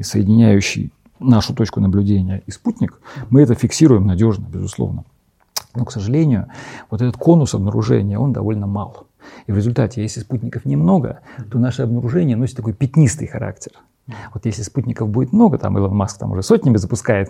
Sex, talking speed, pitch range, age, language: male, 160 wpm, 105-130 Hz, 40-59, Russian